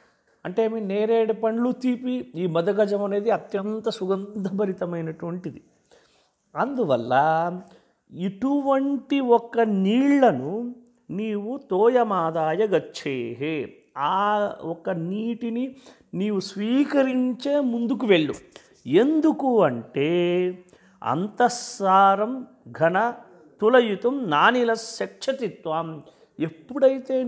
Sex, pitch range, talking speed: male, 170-245 Hz, 70 wpm